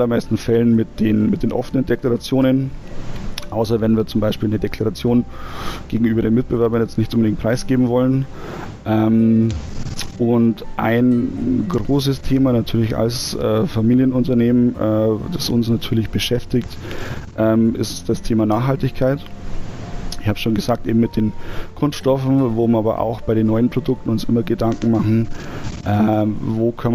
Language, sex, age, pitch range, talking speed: German, male, 30-49, 110-120 Hz, 145 wpm